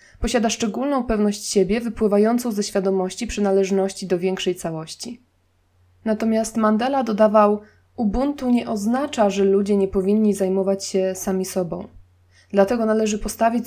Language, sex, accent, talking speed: Polish, female, native, 125 wpm